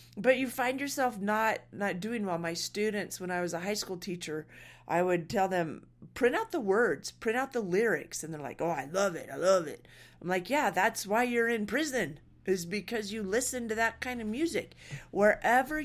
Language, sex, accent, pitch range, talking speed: English, female, American, 155-200 Hz, 215 wpm